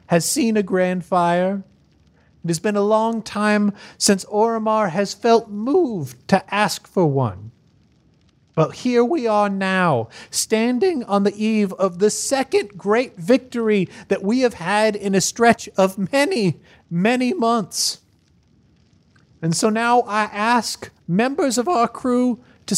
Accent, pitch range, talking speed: American, 175-230 Hz, 145 wpm